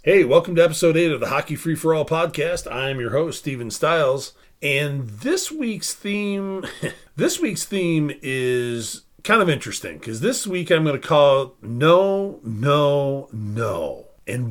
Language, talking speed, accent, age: English, 165 wpm, American, 40-59